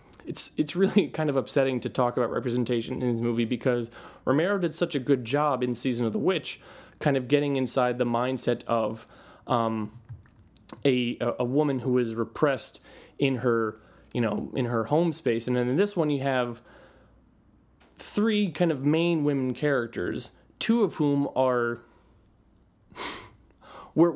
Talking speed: 160 wpm